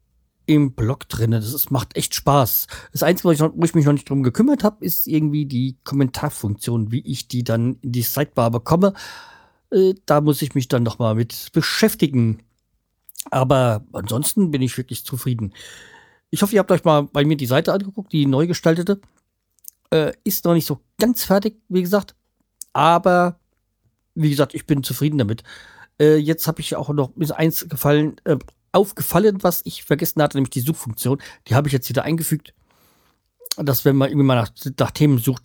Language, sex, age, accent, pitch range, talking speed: German, male, 40-59, German, 120-160 Hz, 190 wpm